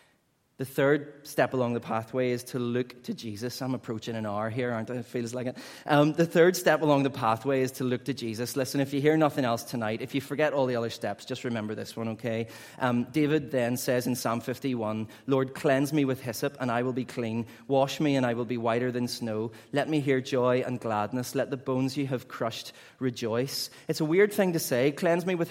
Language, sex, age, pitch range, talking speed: English, male, 30-49, 120-145 Hz, 240 wpm